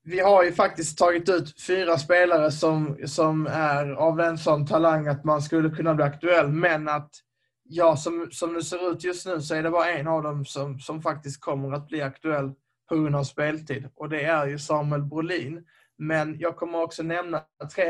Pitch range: 140-165 Hz